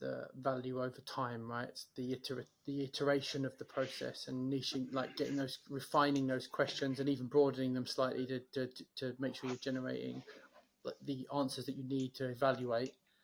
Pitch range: 130-140 Hz